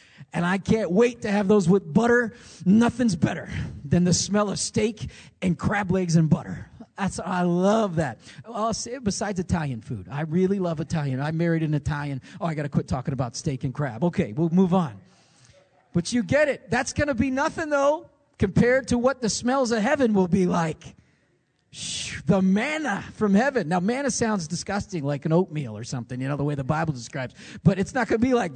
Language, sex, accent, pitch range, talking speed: English, male, American, 150-225 Hz, 210 wpm